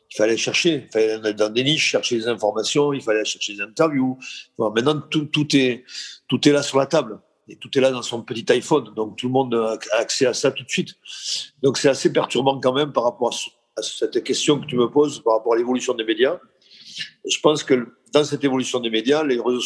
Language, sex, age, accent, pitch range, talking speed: French, male, 50-69, French, 110-150 Hz, 230 wpm